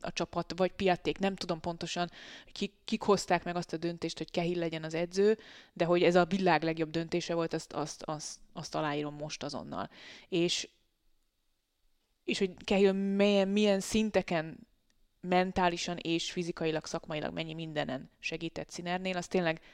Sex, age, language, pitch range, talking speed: female, 20-39, Hungarian, 165-190 Hz, 155 wpm